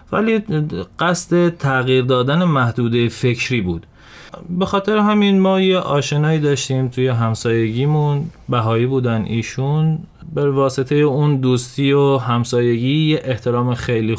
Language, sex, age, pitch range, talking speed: Persian, male, 30-49, 115-150 Hz, 115 wpm